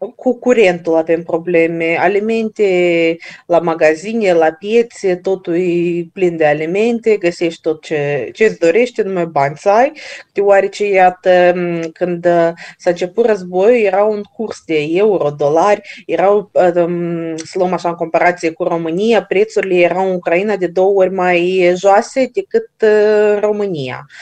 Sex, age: female, 30-49